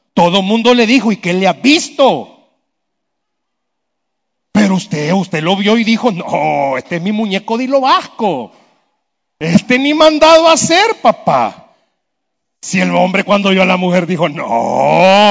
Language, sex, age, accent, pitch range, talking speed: Spanish, male, 40-59, Mexican, 170-250 Hz, 155 wpm